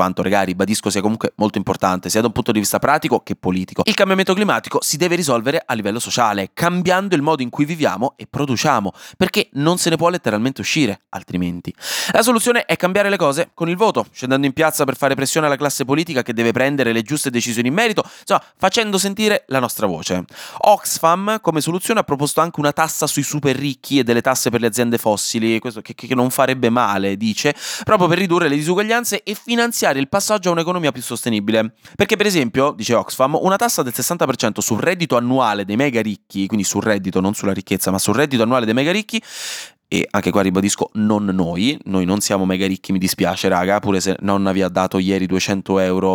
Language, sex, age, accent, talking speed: Italian, male, 20-39, native, 210 wpm